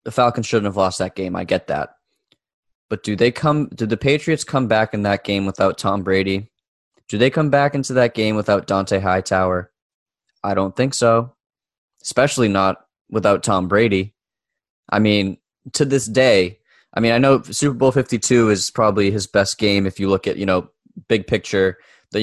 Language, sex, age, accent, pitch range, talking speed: English, male, 20-39, American, 100-120 Hz, 190 wpm